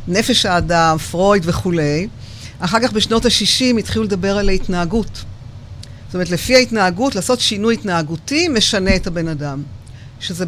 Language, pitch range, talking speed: Hebrew, 160-225 Hz, 135 wpm